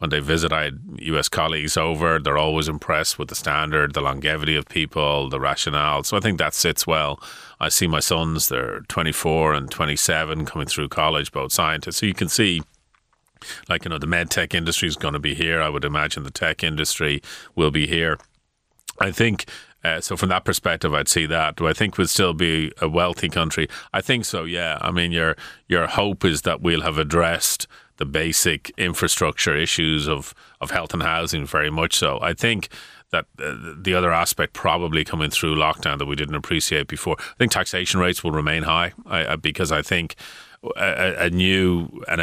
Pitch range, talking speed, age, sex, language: 75-90 Hz, 200 wpm, 30-49, male, English